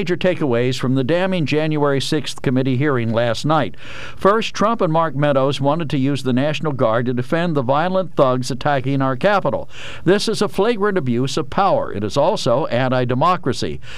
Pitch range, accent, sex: 135-185 Hz, American, male